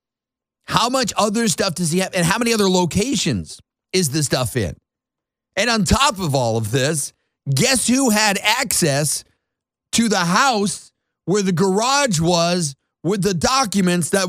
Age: 50-69